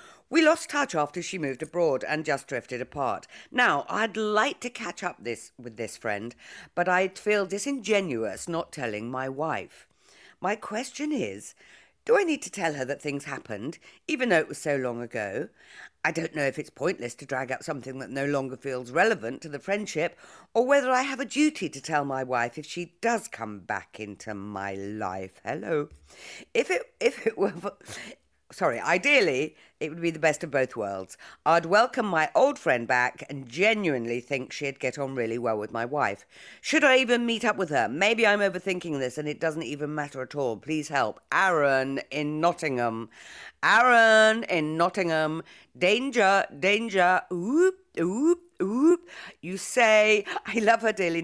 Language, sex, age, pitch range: English, female, 50-69, 130-215 Hz